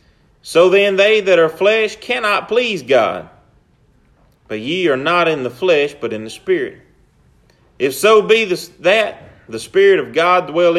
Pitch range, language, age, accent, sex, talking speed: 125-200 Hz, English, 30-49, American, male, 160 wpm